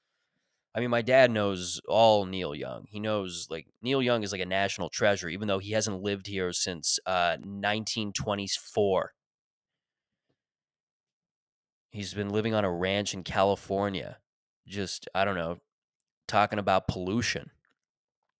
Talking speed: 135 wpm